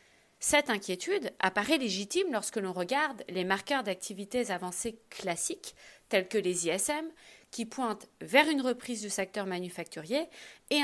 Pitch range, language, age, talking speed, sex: 185-255 Hz, English, 40-59, 140 wpm, female